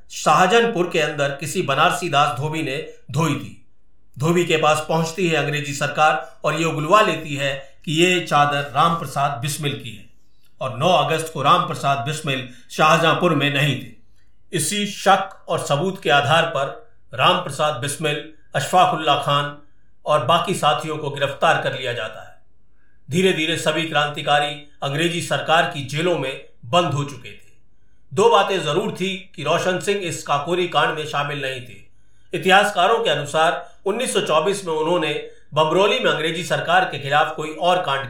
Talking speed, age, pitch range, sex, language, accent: 160 wpm, 50-69, 140-170 Hz, male, Hindi, native